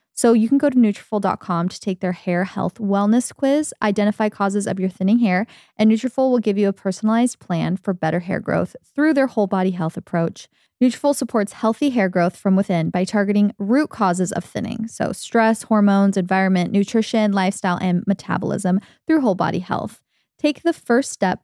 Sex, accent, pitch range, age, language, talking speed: female, American, 185-245 Hz, 20-39, English, 185 wpm